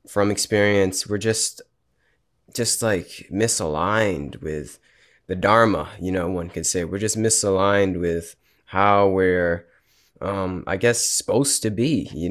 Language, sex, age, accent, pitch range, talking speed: English, male, 20-39, American, 90-105 Hz, 135 wpm